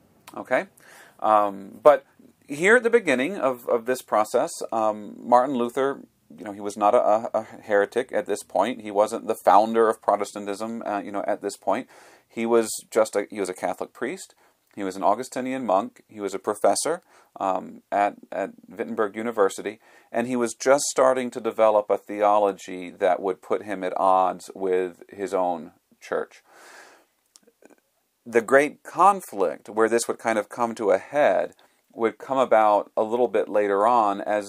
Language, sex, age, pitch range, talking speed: English, male, 40-59, 100-115 Hz, 175 wpm